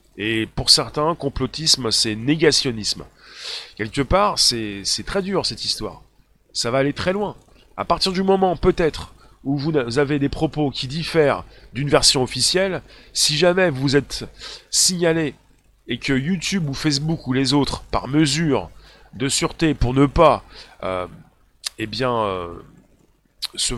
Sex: male